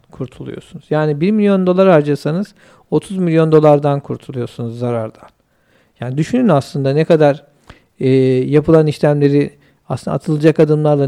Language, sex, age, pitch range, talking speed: Turkish, male, 50-69, 145-180 Hz, 120 wpm